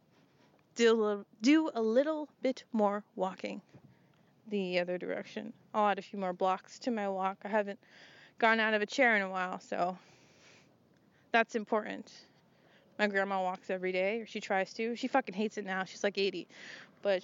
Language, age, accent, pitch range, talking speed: English, 20-39, American, 190-225 Hz, 180 wpm